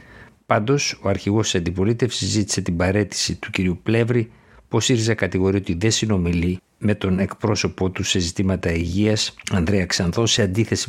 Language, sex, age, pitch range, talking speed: Greek, male, 60-79, 90-110 Hz, 155 wpm